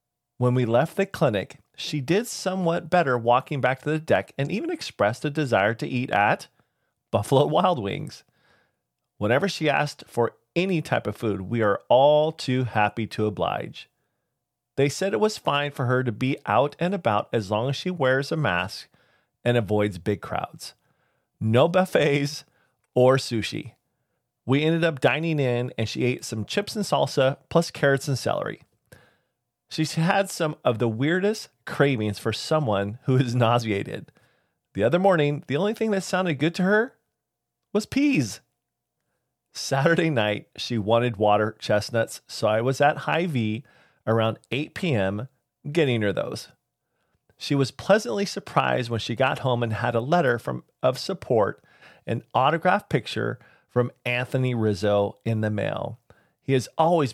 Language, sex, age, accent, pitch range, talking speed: English, male, 30-49, American, 115-160 Hz, 160 wpm